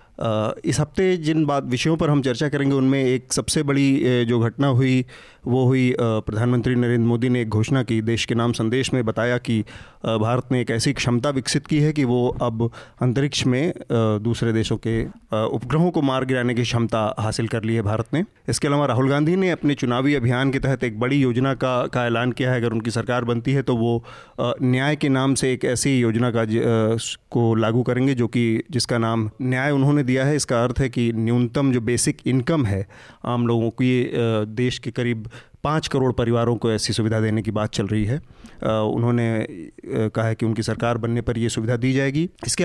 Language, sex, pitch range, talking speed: English, male, 115-135 Hz, 140 wpm